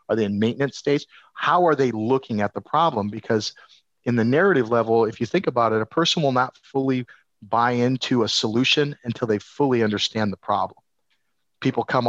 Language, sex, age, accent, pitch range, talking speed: English, male, 40-59, American, 110-130 Hz, 195 wpm